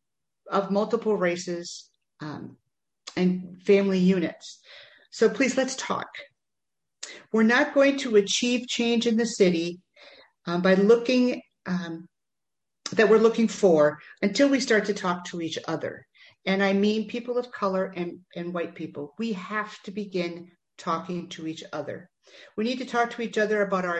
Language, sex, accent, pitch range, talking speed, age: English, female, American, 180-230 Hz, 160 wpm, 50-69